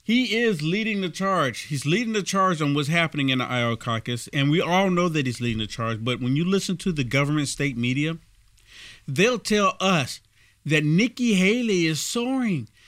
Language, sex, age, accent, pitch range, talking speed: English, male, 50-69, American, 125-210 Hz, 195 wpm